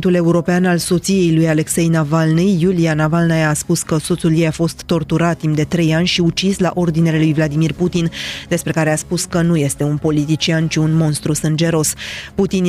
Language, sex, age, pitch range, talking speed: Romanian, female, 20-39, 150-175 Hz, 195 wpm